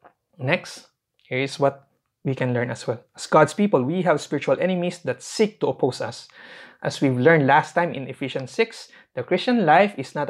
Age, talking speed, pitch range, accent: 20-39, 200 wpm, 135-180 Hz, Filipino